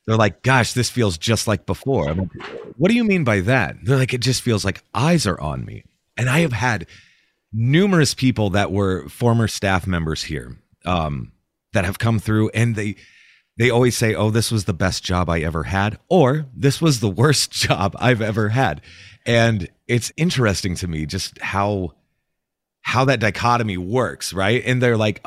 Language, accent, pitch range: English, American, 95-130 Hz